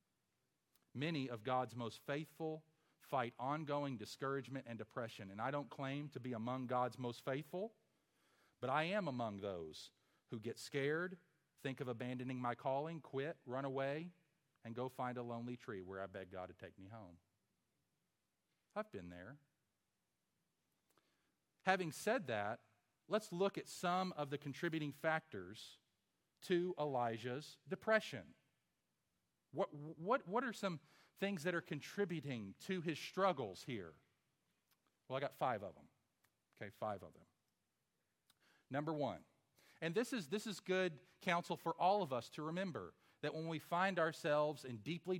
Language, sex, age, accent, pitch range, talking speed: English, male, 40-59, American, 125-170 Hz, 150 wpm